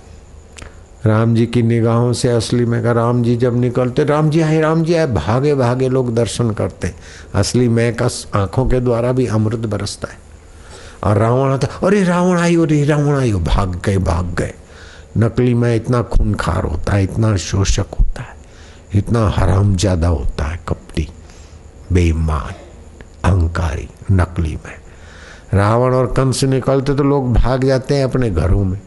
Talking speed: 125 wpm